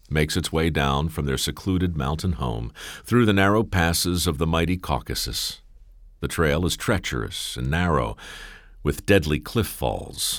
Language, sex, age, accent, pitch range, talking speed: English, male, 50-69, American, 75-90 Hz, 155 wpm